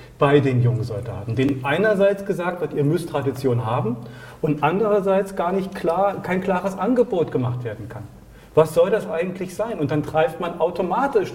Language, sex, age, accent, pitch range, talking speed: German, male, 40-59, German, 140-185 Hz, 175 wpm